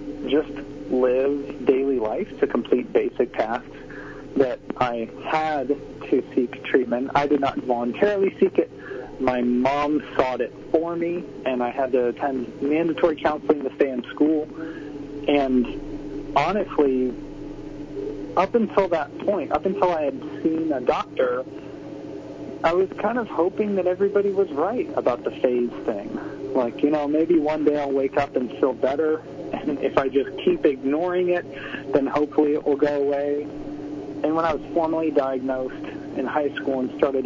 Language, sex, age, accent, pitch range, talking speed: English, male, 40-59, American, 130-165 Hz, 160 wpm